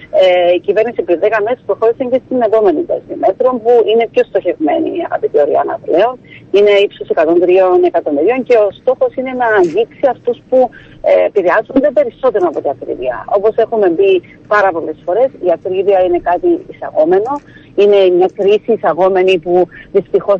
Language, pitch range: Greek, 190-285 Hz